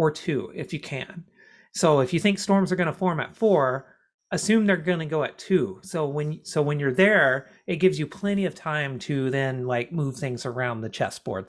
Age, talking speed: 40-59, 225 wpm